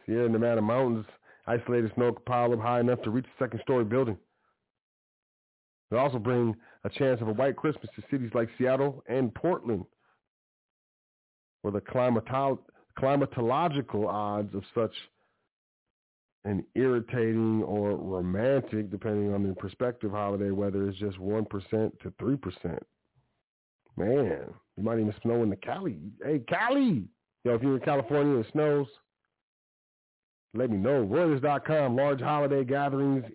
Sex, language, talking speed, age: male, English, 135 wpm, 40-59